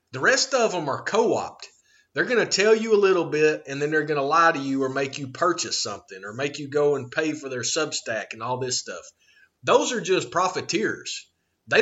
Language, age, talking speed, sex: English, 30-49, 230 wpm, male